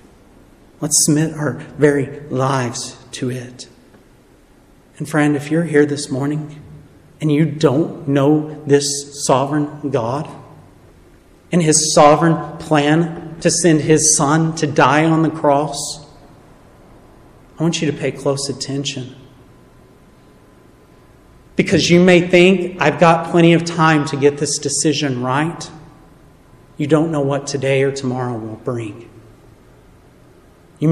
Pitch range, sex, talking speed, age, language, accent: 140-175 Hz, male, 125 wpm, 30-49, English, American